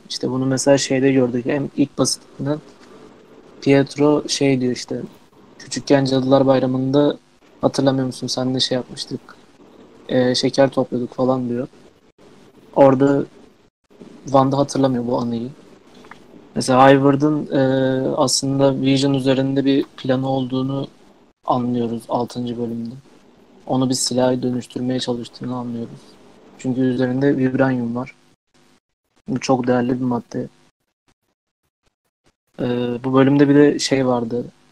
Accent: native